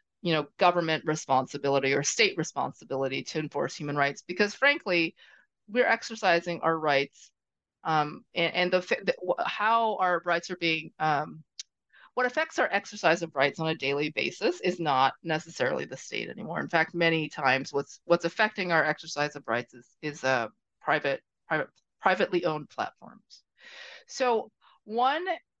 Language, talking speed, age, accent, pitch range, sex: English, 155 wpm, 30-49, American, 155-215 Hz, female